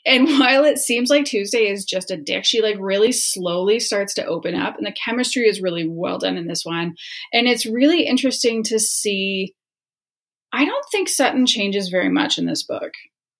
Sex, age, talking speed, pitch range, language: female, 20-39, 195 wpm, 195-260 Hz, English